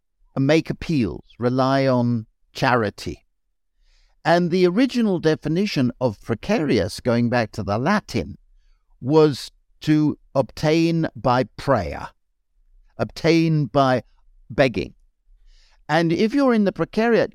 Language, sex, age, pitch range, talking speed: English, male, 60-79, 115-160 Hz, 105 wpm